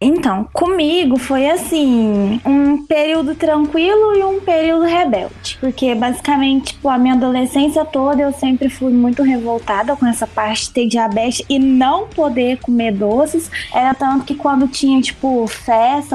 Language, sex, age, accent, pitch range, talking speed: Portuguese, female, 20-39, Brazilian, 240-290 Hz, 150 wpm